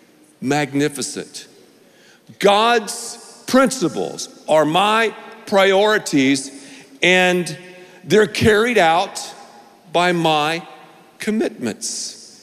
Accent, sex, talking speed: American, male, 65 wpm